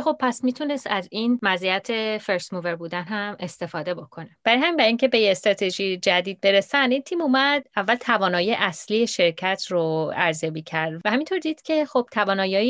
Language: Persian